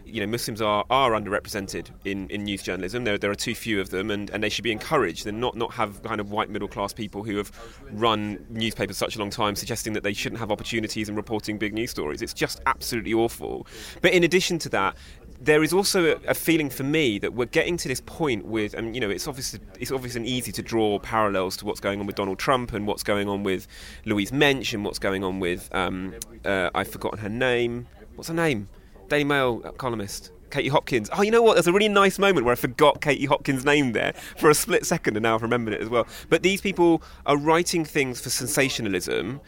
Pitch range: 105-135 Hz